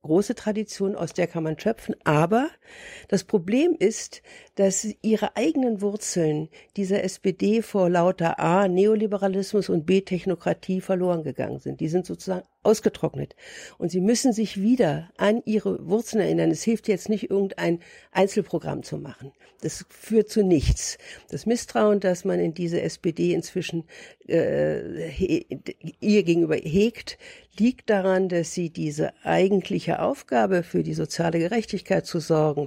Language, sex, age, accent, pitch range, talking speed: German, female, 60-79, German, 165-210 Hz, 140 wpm